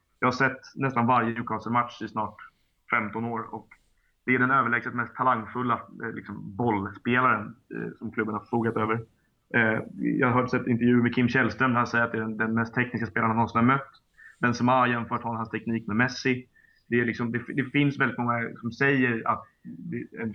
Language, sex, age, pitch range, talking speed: Swedish, male, 30-49, 110-125 Hz, 190 wpm